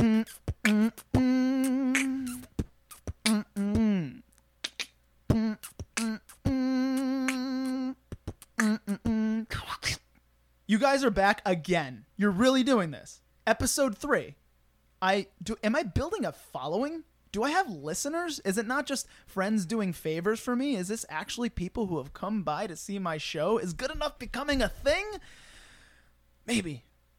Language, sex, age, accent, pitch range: English, male, 30-49, American, 150-235 Hz